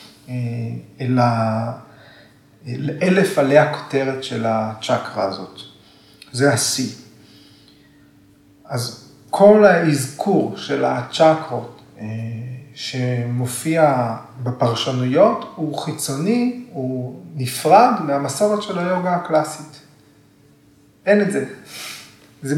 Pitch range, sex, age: 130-170 Hz, male, 40-59